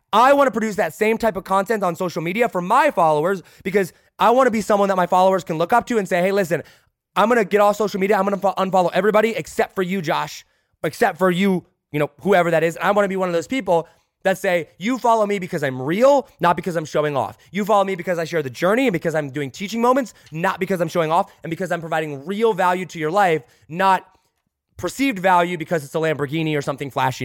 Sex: male